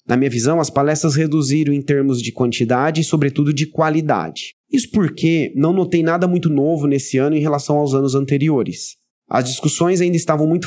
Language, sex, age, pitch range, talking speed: Portuguese, male, 30-49, 130-160 Hz, 185 wpm